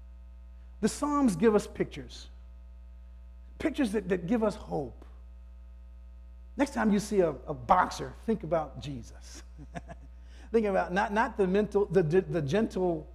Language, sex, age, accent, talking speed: English, male, 50-69, American, 135 wpm